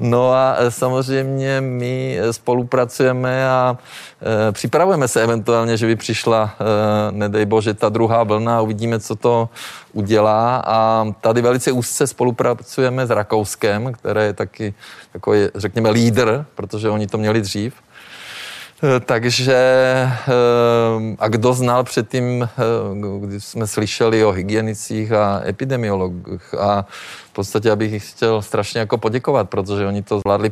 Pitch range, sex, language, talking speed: 105-125 Hz, male, Czech, 125 wpm